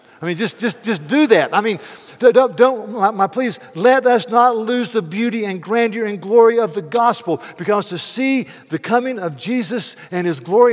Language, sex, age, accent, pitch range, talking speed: English, male, 50-69, American, 145-210 Hz, 215 wpm